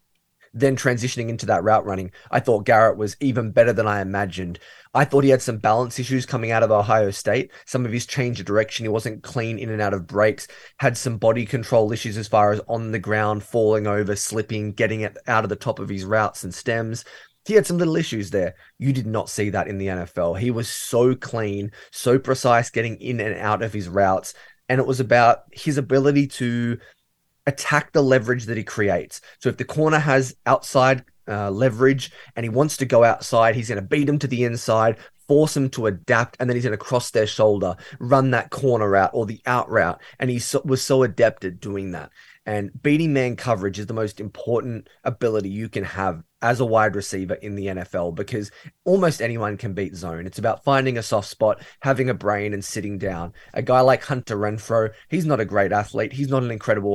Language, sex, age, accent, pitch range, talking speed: English, male, 20-39, Australian, 105-130 Hz, 220 wpm